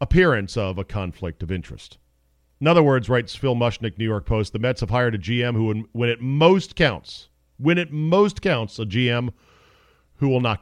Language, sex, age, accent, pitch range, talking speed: English, male, 40-59, American, 95-155 Hz, 200 wpm